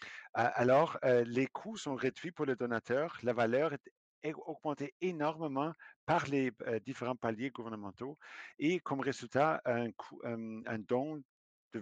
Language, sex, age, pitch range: French, male, 50-69, 125-155 Hz